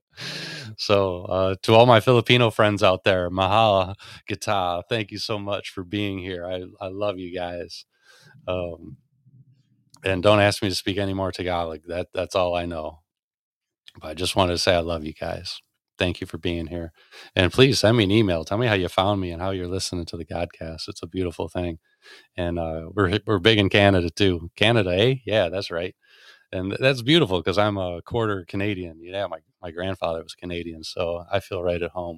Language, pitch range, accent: English, 90-105 Hz, American